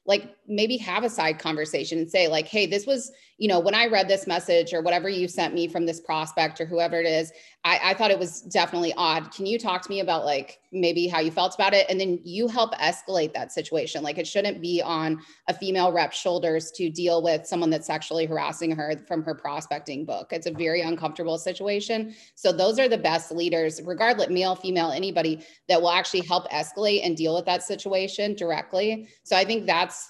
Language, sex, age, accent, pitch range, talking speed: English, female, 30-49, American, 165-195 Hz, 215 wpm